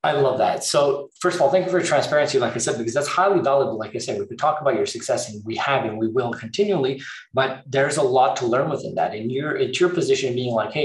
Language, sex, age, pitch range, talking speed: English, male, 20-39, 135-195 Hz, 275 wpm